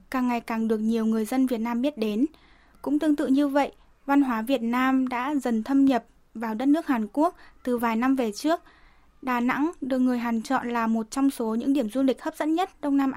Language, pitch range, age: Vietnamese, 230-280 Hz, 10-29